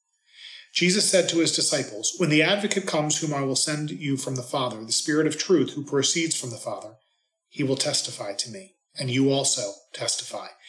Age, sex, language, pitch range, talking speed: 40-59, male, English, 130-200 Hz, 195 wpm